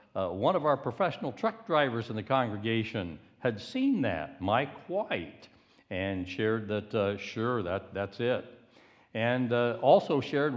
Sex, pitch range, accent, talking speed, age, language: male, 105-130 Hz, American, 155 wpm, 60-79, English